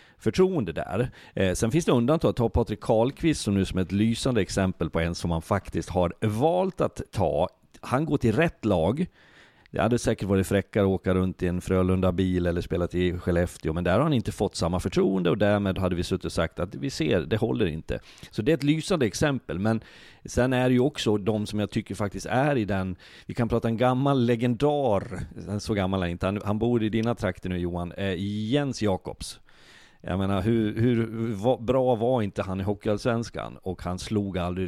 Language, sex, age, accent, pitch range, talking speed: Swedish, male, 40-59, native, 90-115 Hz, 215 wpm